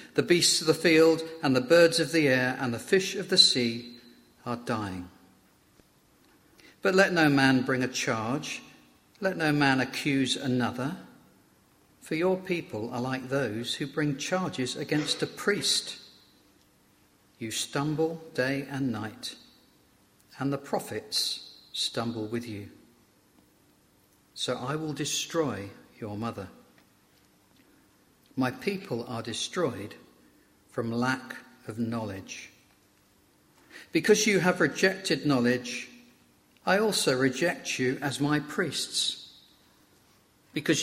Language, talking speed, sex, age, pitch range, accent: English, 120 wpm, male, 50-69, 120-155 Hz, British